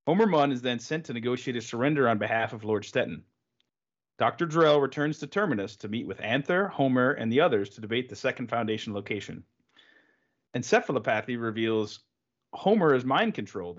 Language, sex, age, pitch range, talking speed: English, male, 30-49, 110-150 Hz, 165 wpm